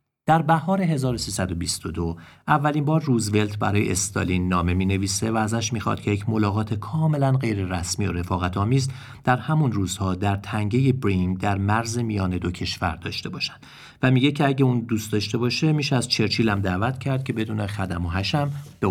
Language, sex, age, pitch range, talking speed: Persian, male, 40-59, 95-125 Hz, 175 wpm